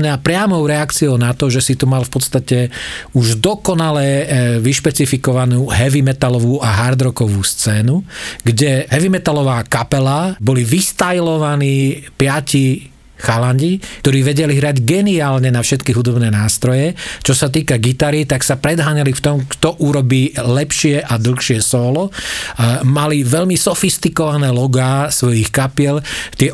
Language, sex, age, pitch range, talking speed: Slovak, male, 40-59, 120-150 Hz, 135 wpm